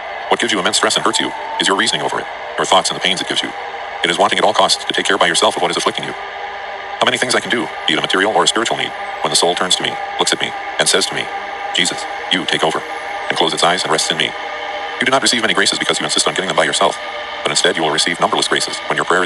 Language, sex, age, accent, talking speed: English, male, 40-59, American, 310 wpm